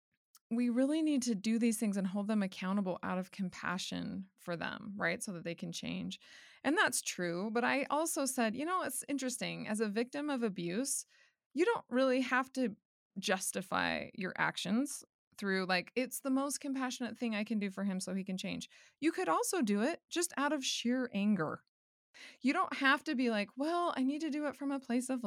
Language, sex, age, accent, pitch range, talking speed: English, female, 20-39, American, 200-285 Hz, 210 wpm